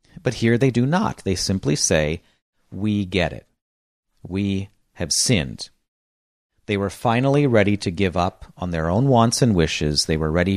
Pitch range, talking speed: 85-120 Hz, 170 wpm